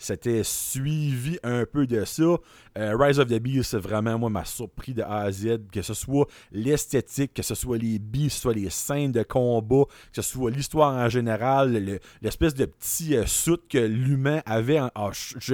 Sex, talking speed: male, 200 wpm